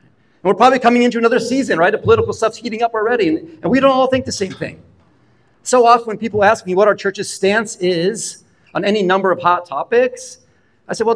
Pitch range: 145-205 Hz